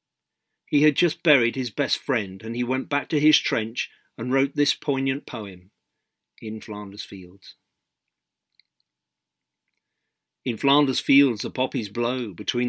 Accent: British